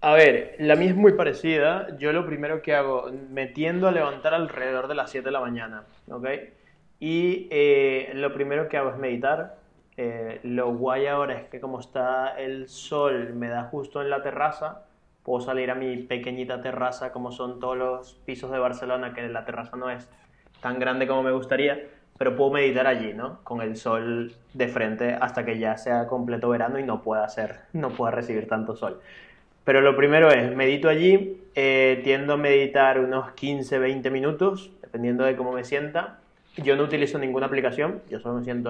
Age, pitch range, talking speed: 20-39, 125-145 Hz, 190 wpm